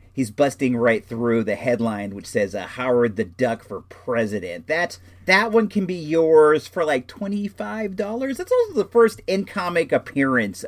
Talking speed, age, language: 165 wpm, 40-59, English